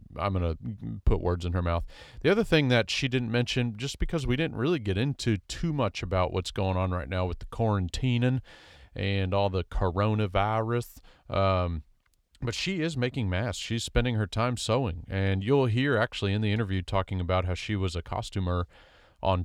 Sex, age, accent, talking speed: male, 40-59, American, 190 wpm